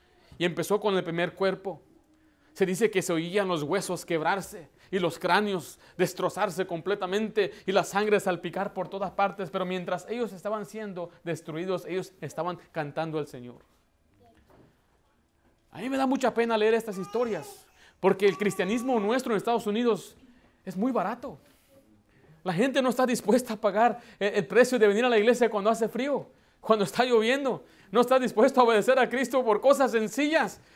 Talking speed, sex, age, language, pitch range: 170 wpm, male, 30-49, Spanish, 195-300 Hz